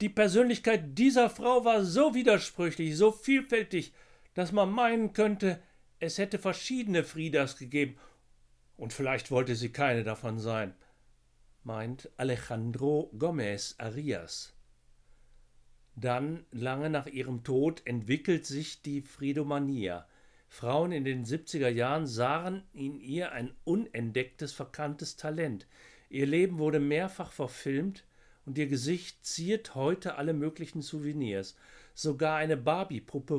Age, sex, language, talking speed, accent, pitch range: 60-79, male, German, 120 wpm, German, 125-170 Hz